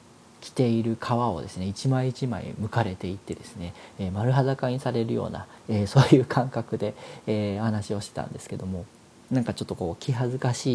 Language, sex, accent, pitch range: Japanese, male, native, 105-130 Hz